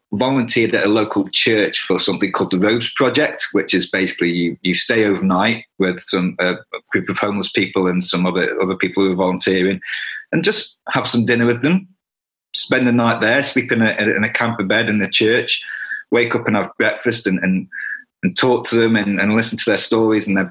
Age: 30-49